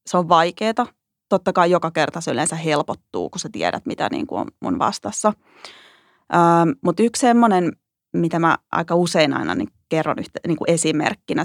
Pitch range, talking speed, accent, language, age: 155-180 Hz, 175 wpm, native, Finnish, 30-49